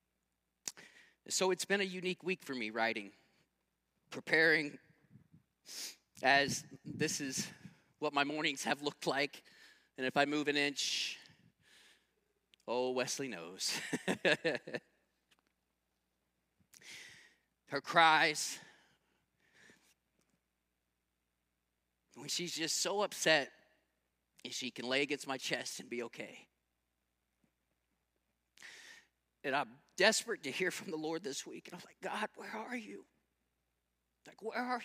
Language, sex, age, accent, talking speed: English, male, 30-49, American, 110 wpm